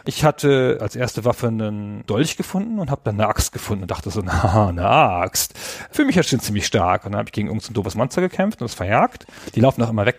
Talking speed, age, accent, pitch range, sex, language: 265 wpm, 40-59, German, 110-155 Hz, male, German